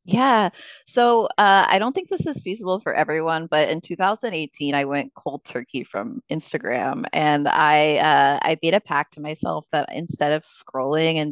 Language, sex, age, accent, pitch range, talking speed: English, female, 20-39, American, 150-180 Hz, 180 wpm